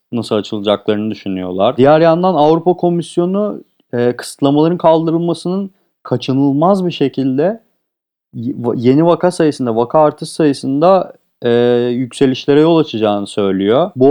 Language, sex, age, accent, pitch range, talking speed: Turkish, male, 40-59, native, 120-160 Hz, 105 wpm